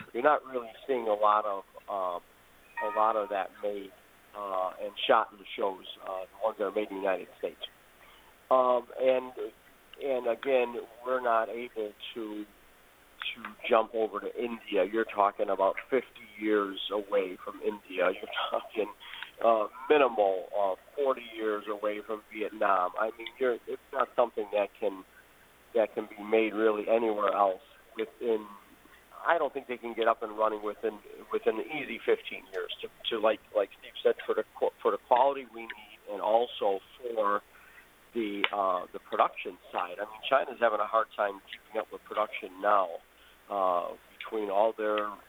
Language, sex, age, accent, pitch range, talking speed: English, male, 50-69, American, 105-125 Hz, 170 wpm